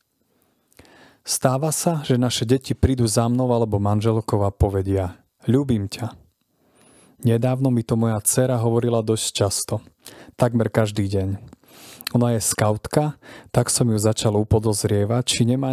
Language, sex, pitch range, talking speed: Slovak, male, 105-125 Hz, 135 wpm